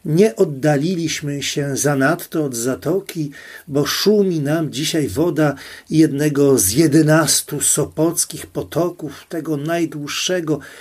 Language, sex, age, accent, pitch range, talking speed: Polish, male, 40-59, native, 140-170 Hz, 100 wpm